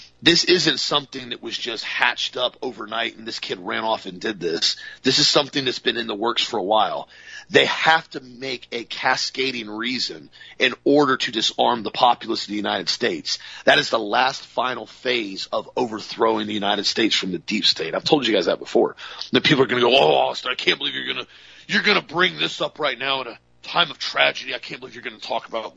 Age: 40-59